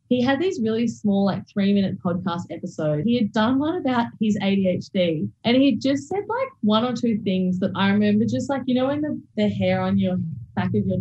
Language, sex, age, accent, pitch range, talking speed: English, female, 20-39, Australian, 185-235 Hz, 225 wpm